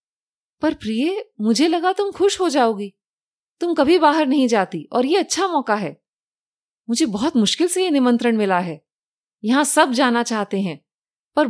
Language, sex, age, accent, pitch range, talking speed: Hindi, female, 30-49, native, 210-310 Hz, 165 wpm